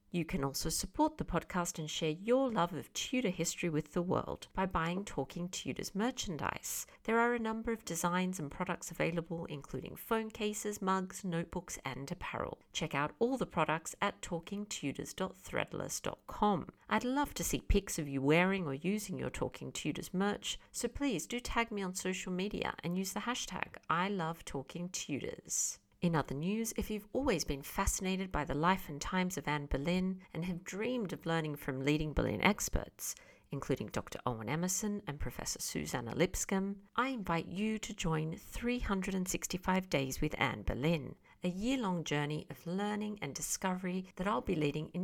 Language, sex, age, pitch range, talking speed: English, female, 50-69, 155-205 Hz, 170 wpm